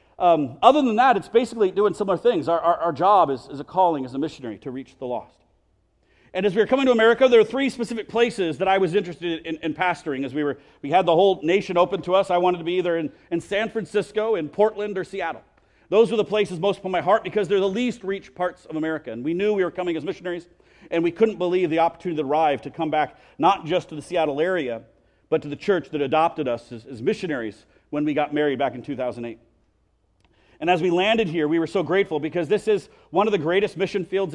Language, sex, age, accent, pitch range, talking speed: English, male, 40-59, American, 160-205 Hz, 250 wpm